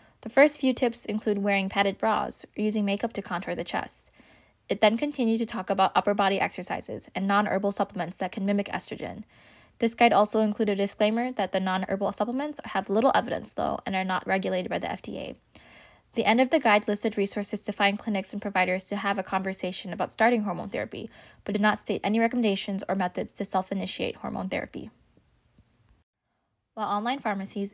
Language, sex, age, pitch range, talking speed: English, female, 10-29, 190-220 Hz, 190 wpm